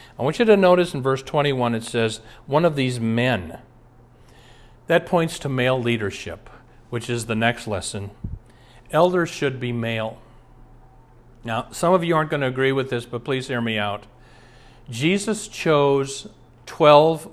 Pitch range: 120-155 Hz